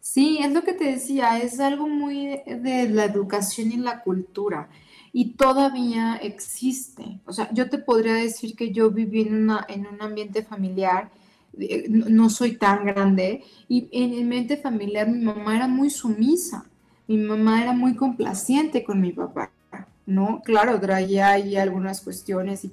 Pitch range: 210-265 Hz